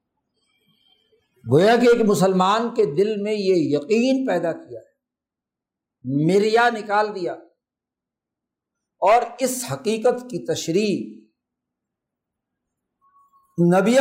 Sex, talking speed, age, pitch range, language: male, 90 wpm, 60-79, 175-235 Hz, Urdu